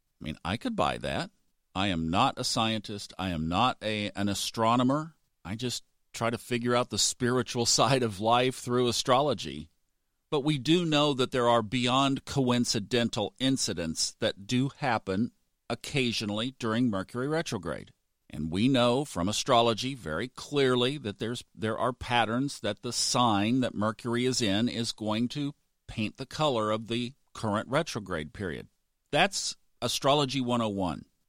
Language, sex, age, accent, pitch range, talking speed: English, male, 50-69, American, 105-135 Hz, 155 wpm